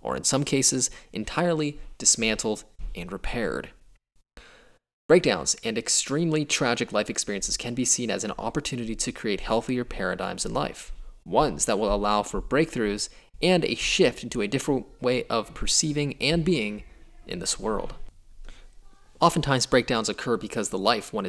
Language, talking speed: English, 150 wpm